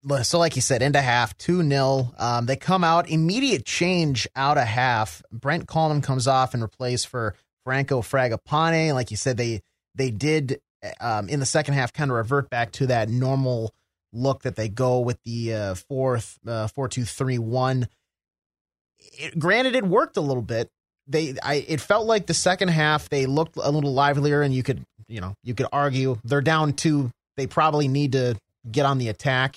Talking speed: 195 wpm